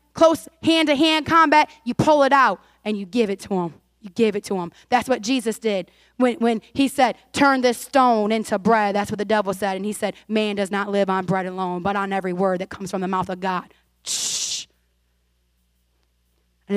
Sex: female